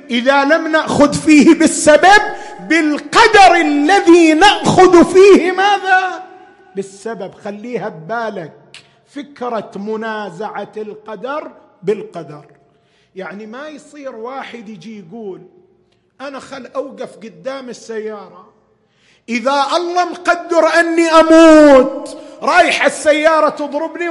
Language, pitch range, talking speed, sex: Arabic, 220-335 Hz, 90 wpm, male